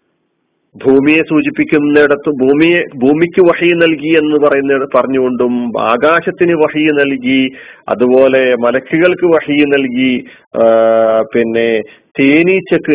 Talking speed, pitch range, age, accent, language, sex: 85 wpm, 130-155 Hz, 40-59, native, Malayalam, male